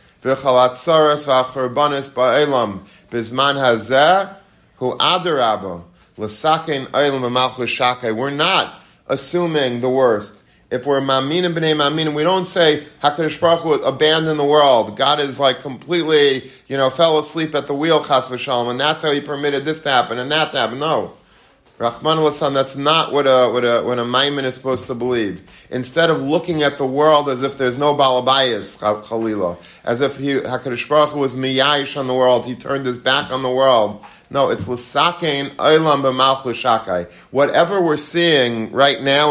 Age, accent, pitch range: 30-49, American, 125-150 Hz